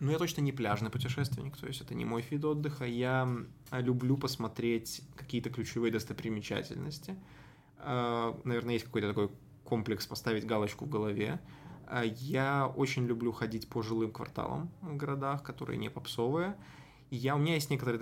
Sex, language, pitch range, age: male, Russian, 115-140 Hz, 20-39